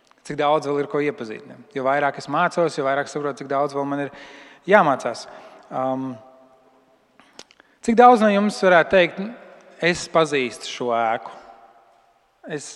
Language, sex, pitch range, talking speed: English, male, 135-170 Hz, 150 wpm